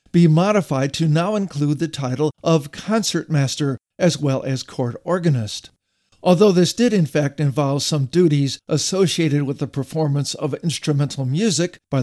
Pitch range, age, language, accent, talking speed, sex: 140-175 Hz, 50-69, English, American, 150 wpm, male